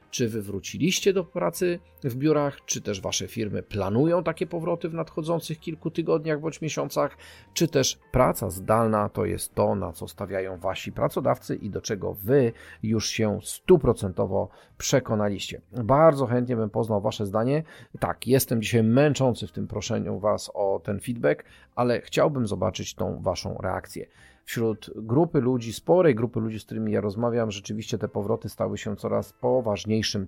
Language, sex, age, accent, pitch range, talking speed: Polish, male, 40-59, native, 105-140 Hz, 160 wpm